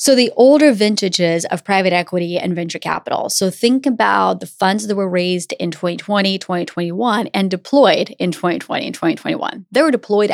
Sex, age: female, 30-49